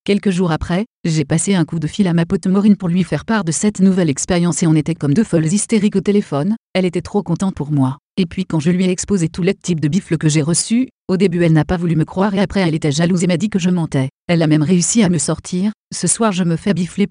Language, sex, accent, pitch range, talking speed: French, female, French, 165-195 Hz, 290 wpm